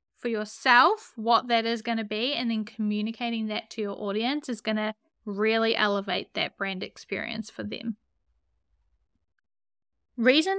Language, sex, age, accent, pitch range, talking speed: English, female, 10-29, Australian, 220-275 Hz, 140 wpm